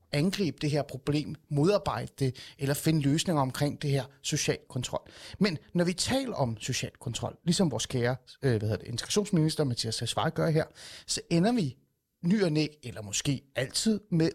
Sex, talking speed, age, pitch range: male, 165 wpm, 30-49, 125-165 Hz